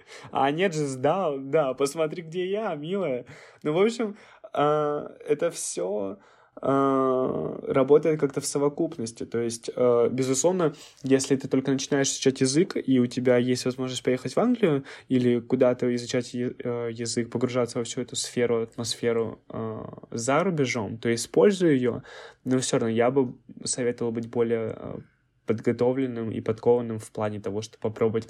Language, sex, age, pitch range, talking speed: Russian, male, 10-29, 115-135 Hz, 145 wpm